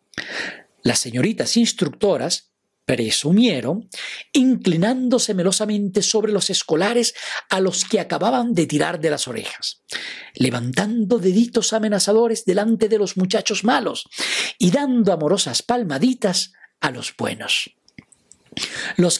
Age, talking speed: 50-69, 105 wpm